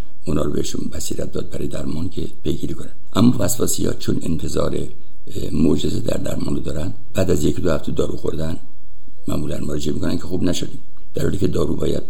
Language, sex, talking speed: Persian, male, 165 wpm